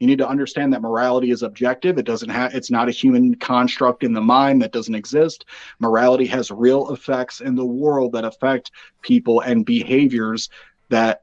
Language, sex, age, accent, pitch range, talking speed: English, male, 30-49, American, 120-160 Hz, 185 wpm